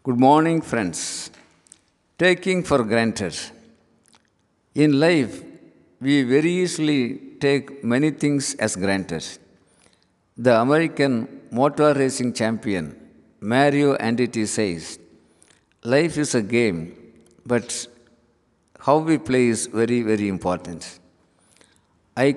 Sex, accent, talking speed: male, native, 100 wpm